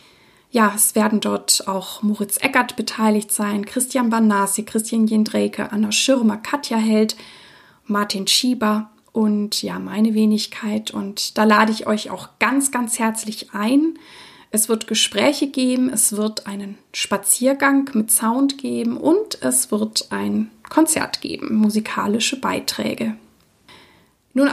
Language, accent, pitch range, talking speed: German, German, 210-255 Hz, 130 wpm